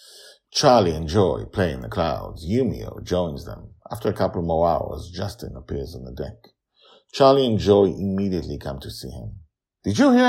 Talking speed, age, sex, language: 180 wpm, 50-69, male, English